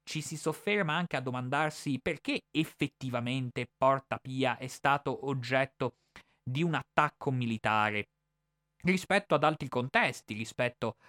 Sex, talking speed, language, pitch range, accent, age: male, 120 wpm, Italian, 110-130 Hz, native, 20-39